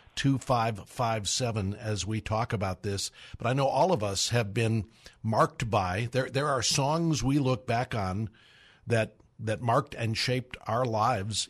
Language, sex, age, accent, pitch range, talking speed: English, male, 50-69, American, 105-130 Hz, 175 wpm